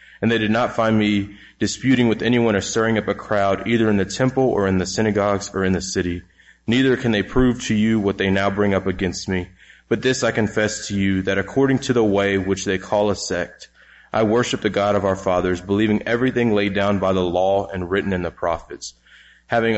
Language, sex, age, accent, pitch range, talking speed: English, male, 20-39, American, 95-110 Hz, 230 wpm